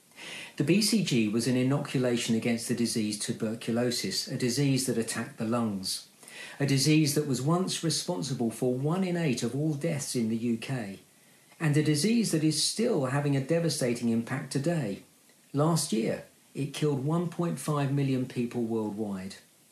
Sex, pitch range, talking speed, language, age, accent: male, 115-150 Hz, 150 wpm, English, 50-69, British